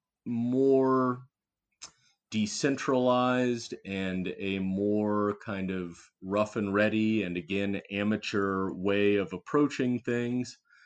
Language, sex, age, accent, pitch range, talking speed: English, male, 30-49, American, 100-120 Hz, 95 wpm